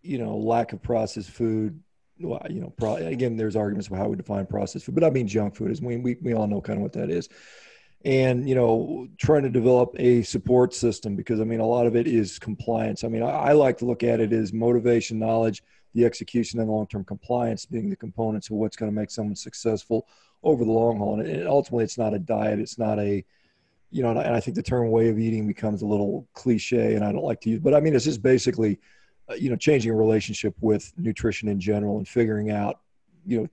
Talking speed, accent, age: 245 wpm, American, 40-59